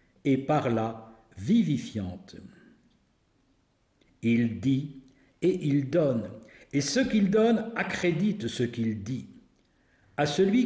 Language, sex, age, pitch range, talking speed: French, male, 60-79, 115-170 Hz, 105 wpm